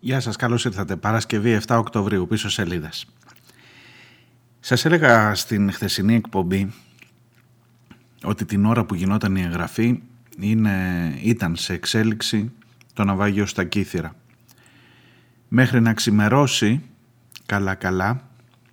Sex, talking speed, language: male, 105 wpm, Greek